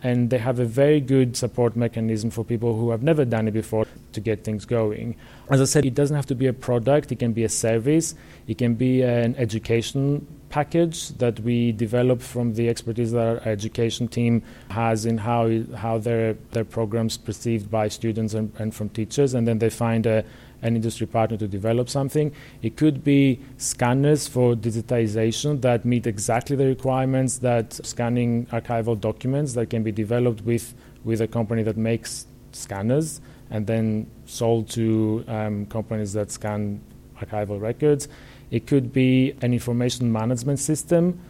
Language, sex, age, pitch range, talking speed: English, male, 30-49, 110-125 Hz, 175 wpm